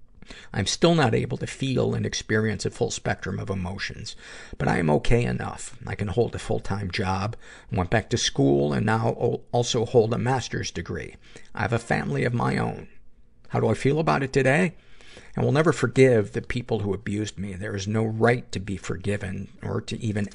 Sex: male